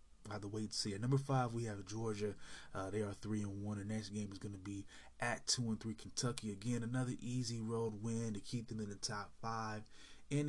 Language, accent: English, American